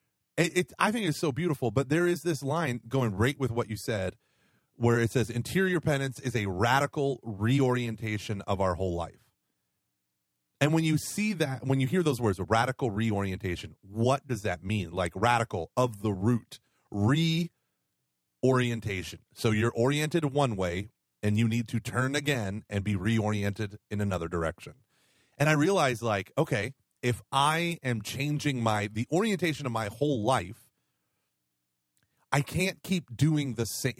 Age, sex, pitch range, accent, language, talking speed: 30-49, male, 105-145 Hz, American, English, 160 wpm